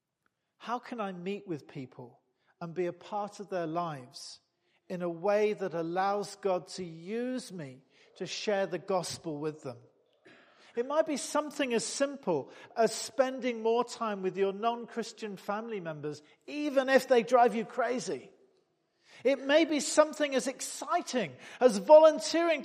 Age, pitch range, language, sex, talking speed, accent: 50-69, 200-270 Hz, English, male, 150 wpm, British